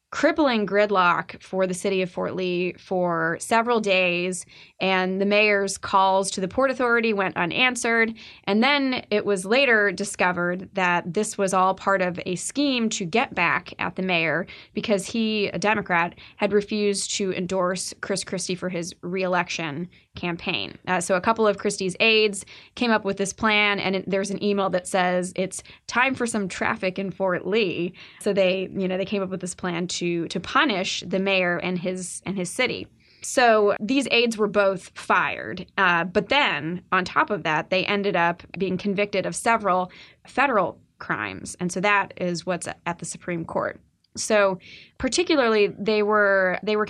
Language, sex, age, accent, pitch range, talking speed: English, female, 20-39, American, 180-215 Hz, 180 wpm